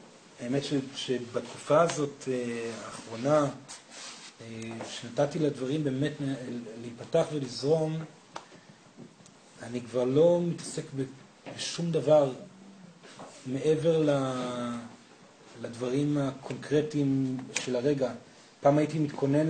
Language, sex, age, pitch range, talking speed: Hebrew, male, 40-59, 120-140 Hz, 70 wpm